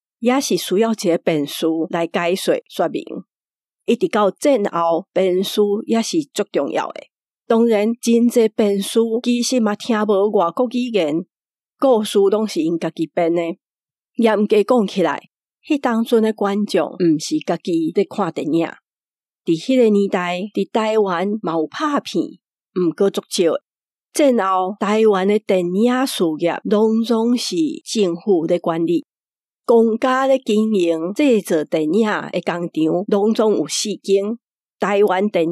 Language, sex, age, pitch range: Chinese, female, 50-69, 175-230 Hz